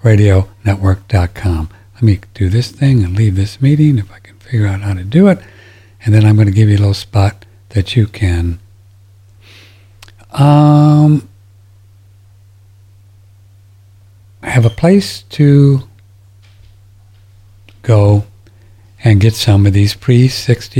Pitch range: 100-120 Hz